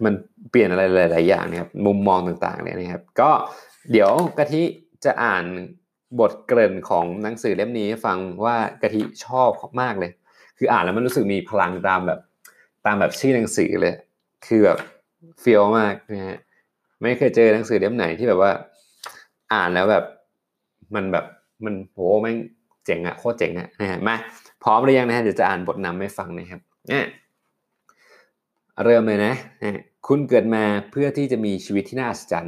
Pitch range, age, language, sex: 100-125 Hz, 20-39, Thai, male